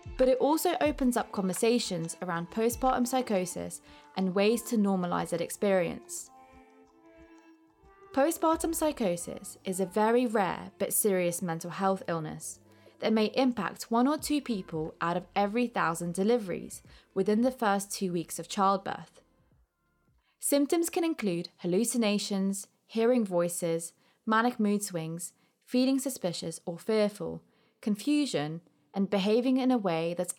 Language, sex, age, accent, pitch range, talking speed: English, female, 20-39, British, 175-240 Hz, 130 wpm